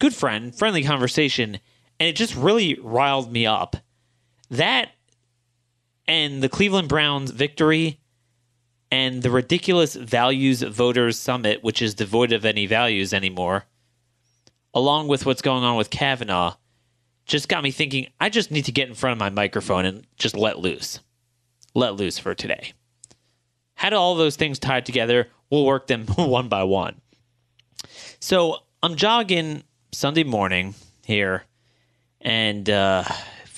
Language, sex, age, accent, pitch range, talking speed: English, male, 30-49, American, 110-140 Hz, 140 wpm